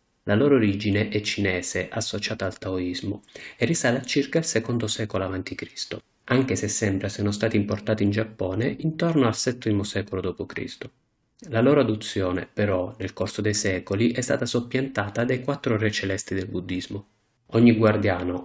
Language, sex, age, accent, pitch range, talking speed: Italian, male, 30-49, native, 100-120 Hz, 155 wpm